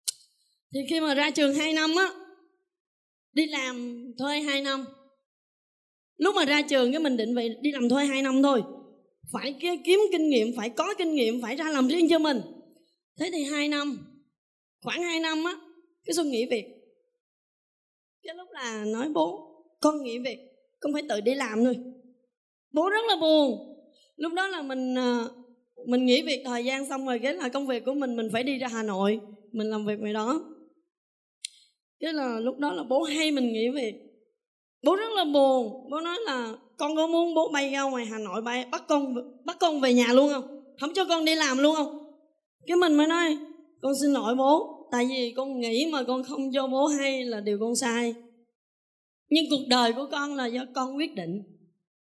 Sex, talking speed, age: female, 200 wpm, 20-39